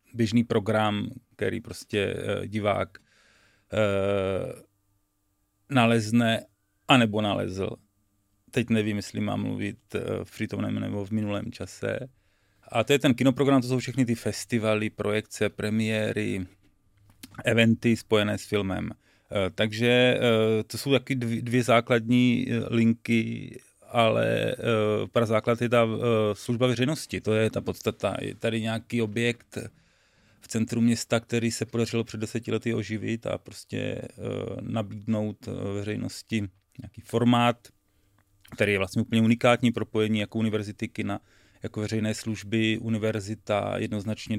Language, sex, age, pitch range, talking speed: Czech, male, 40-59, 100-115 Hz, 130 wpm